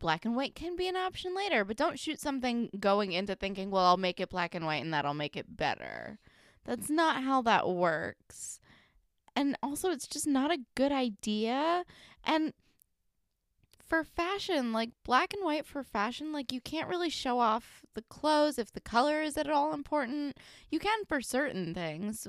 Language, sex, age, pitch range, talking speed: English, female, 20-39, 195-300 Hz, 185 wpm